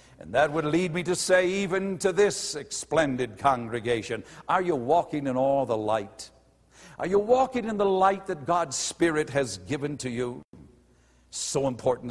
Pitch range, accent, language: 135-195 Hz, American, English